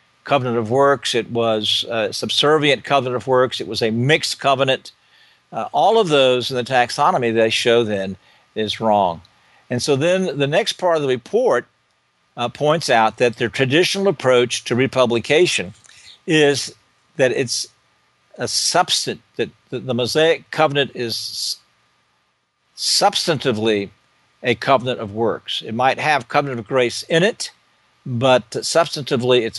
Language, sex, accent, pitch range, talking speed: English, male, American, 115-145 Hz, 145 wpm